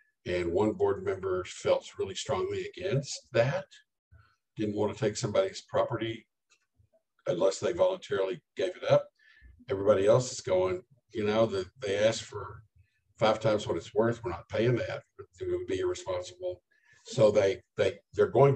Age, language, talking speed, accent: 60-79, English, 160 wpm, American